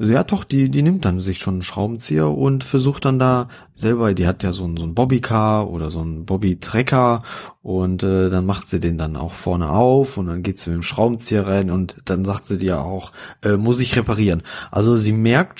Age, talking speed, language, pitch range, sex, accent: 30-49, 225 wpm, German, 95-125 Hz, male, German